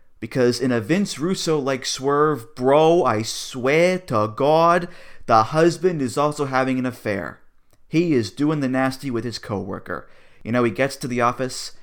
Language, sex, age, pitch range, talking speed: English, male, 30-49, 110-150 Hz, 165 wpm